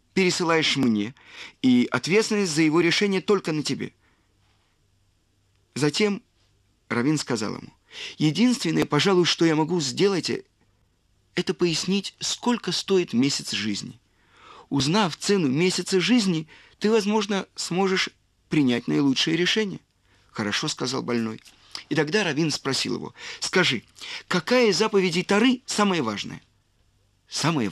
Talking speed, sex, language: 115 wpm, male, Russian